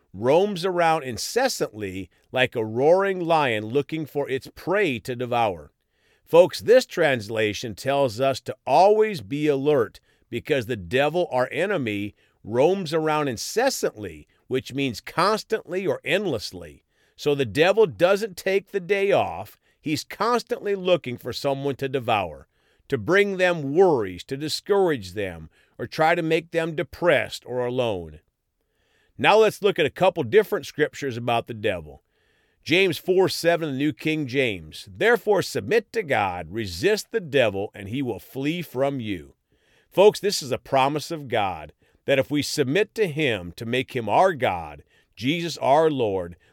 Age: 50-69